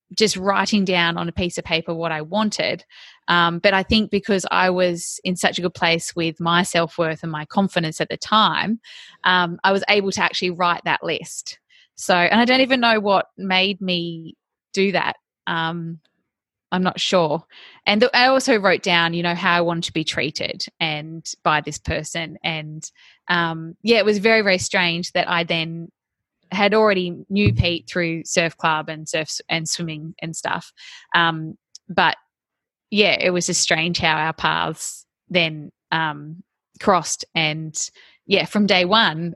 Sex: female